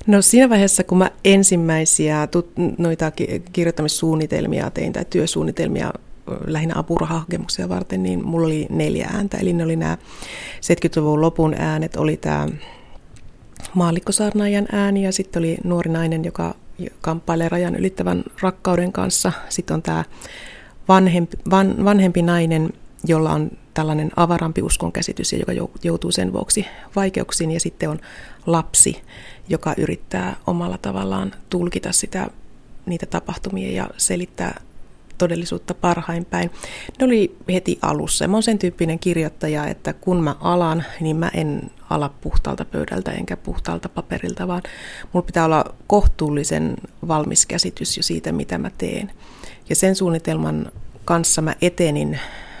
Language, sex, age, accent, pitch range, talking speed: Finnish, female, 30-49, native, 155-180 Hz, 130 wpm